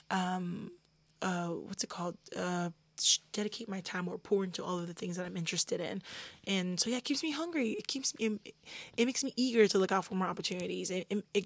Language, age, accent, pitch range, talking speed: English, 20-39, American, 175-215 Hz, 225 wpm